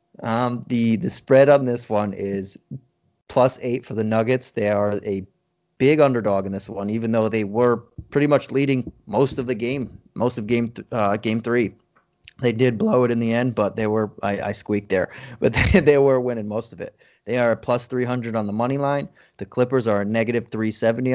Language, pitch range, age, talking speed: English, 105-125 Hz, 30-49, 220 wpm